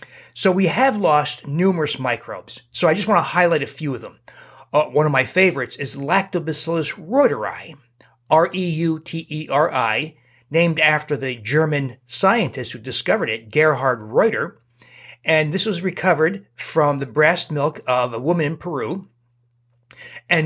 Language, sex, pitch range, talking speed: English, male, 125-165 Hz, 145 wpm